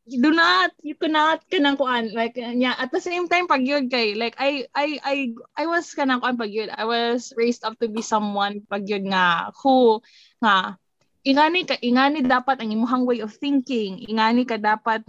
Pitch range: 200-255 Hz